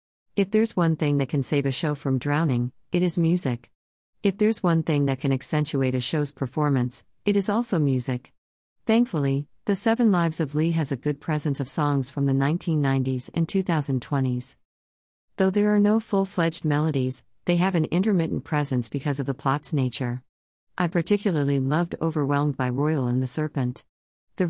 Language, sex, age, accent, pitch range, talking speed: English, female, 50-69, American, 130-165 Hz, 175 wpm